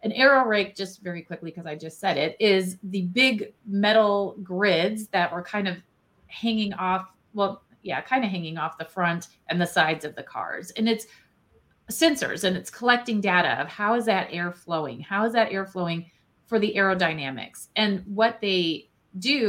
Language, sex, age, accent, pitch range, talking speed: English, female, 30-49, American, 175-230 Hz, 190 wpm